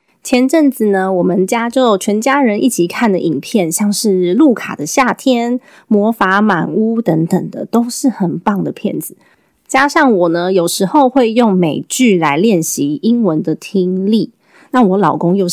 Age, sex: 20-39, female